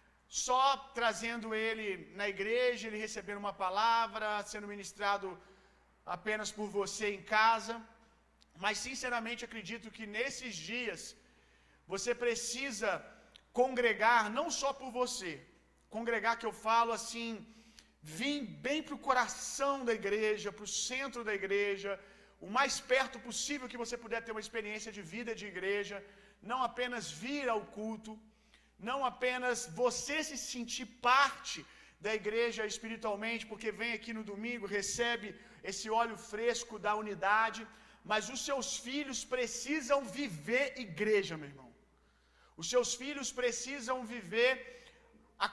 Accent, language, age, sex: Brazilian, Gujarati, 40-59, male